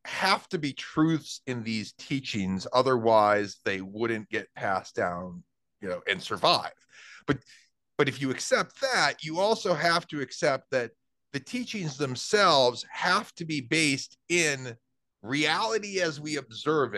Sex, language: male, English